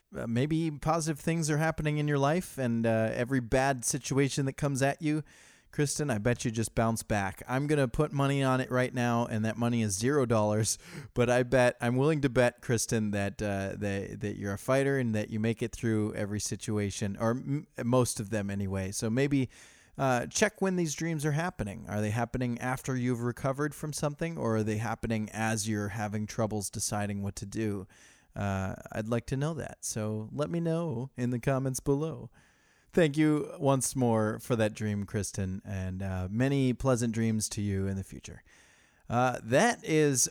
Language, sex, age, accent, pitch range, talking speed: English, male, 30-49, American, 110-150 Hz, 200 wpm